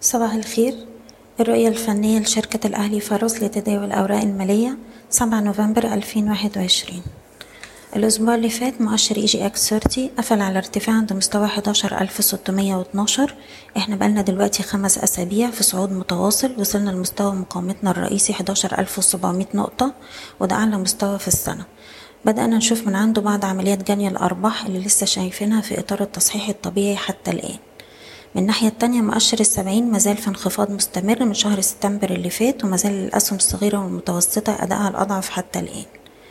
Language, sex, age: Arabic, female, 20-39